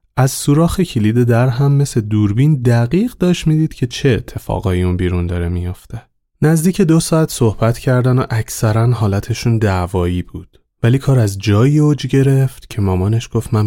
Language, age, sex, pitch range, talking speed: Persian, 30-49, male, 100-135 Hz, 165 wpm